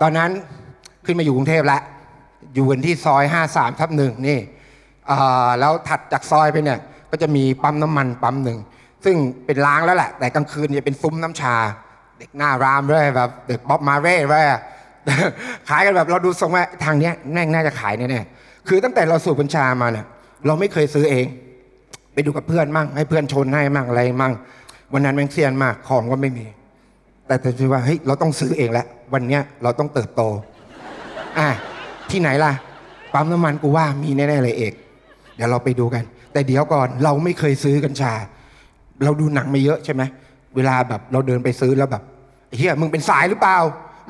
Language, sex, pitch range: Thai, male, 130-155 Hz